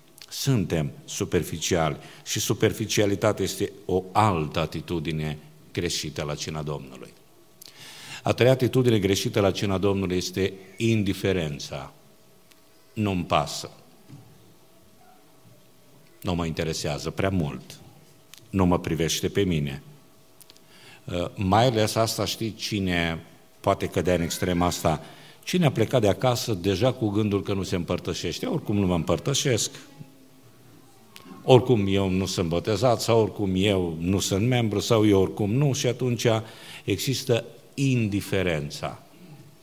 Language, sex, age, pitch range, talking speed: Romanian, male, 50-69, 90-125 Hz, 120 wpm